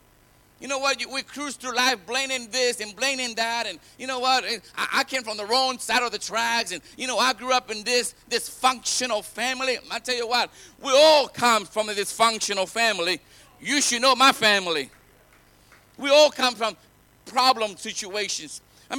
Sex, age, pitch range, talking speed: male, 50-69, 220-270 Hz, 185 wpm